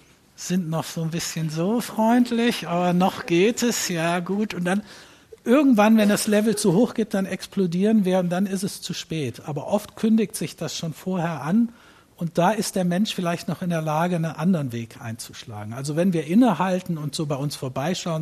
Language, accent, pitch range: German, German, 145-190 Hz